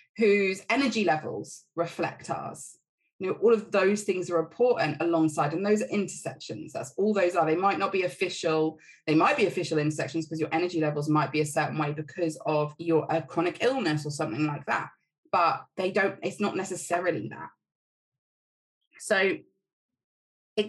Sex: female